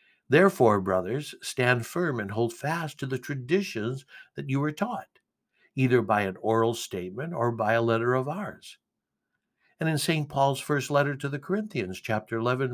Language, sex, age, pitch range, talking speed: English, male, 60-79, 115-150 Hz, 170 wpm